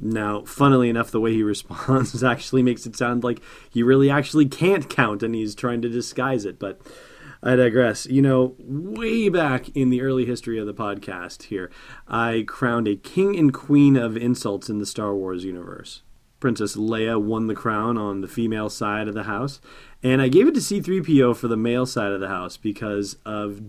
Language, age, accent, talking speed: English, 30-49, American, 200 wpm